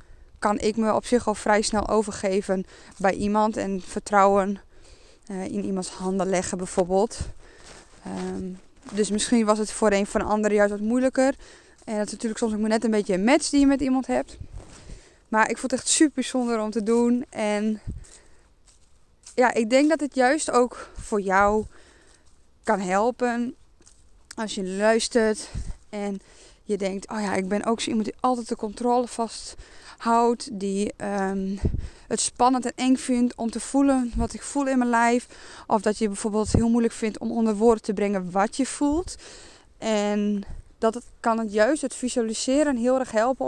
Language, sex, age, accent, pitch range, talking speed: Dutch, female, 20-39, Dutch, 210-245 Hz, 175 wpm